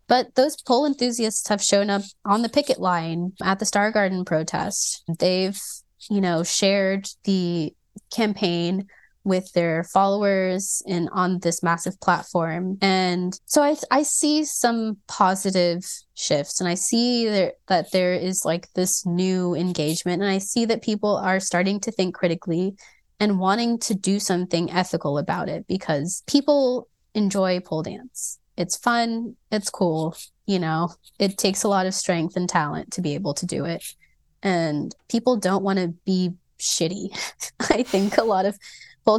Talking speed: 160 wpm